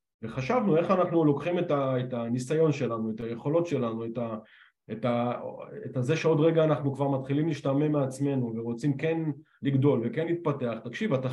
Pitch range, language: 120-155 Hz, Hebrew